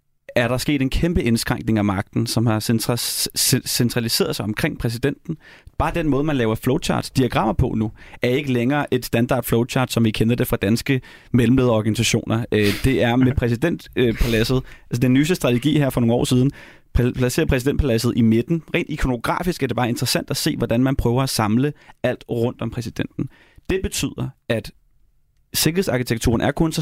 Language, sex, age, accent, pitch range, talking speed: Danish, male, 30-49, native, 115-135 Hz, 170 wpm